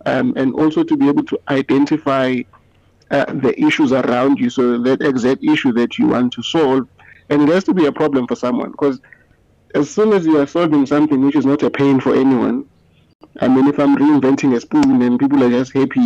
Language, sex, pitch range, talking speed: English, male, 125-155 Hz, 215 wpm